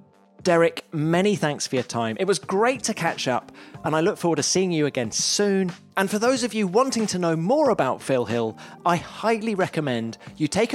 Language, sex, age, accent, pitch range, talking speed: English, male, 30-49, British, 135-215 Hz, 210 wpm